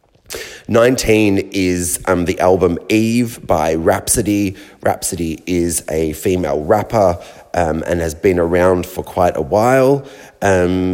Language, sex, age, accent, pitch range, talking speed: English, male, 30-49, Australian, 90-110 Hz, 125 wpm